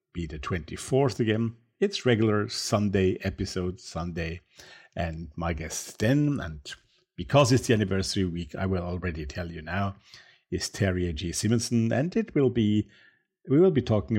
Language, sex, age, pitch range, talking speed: English, male, 50-69, 90-115 Hz, 155 wpm